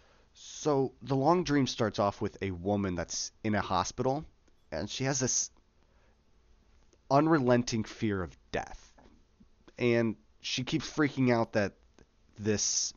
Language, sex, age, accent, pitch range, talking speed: English, male, 30-49, American, 85-110 Hz, 130 wpm